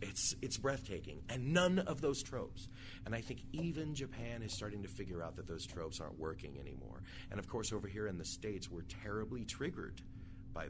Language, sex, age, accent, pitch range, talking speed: English, male, 30-49, American, 85-110 Hz, 200 wpm